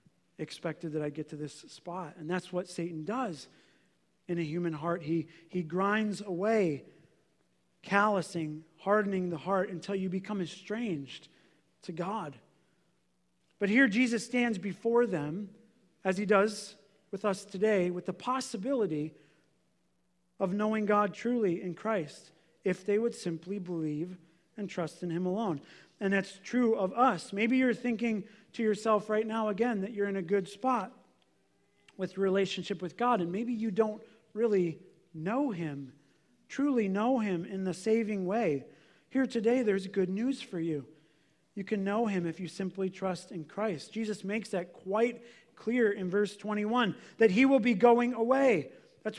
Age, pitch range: 40-59, 175-235 Hz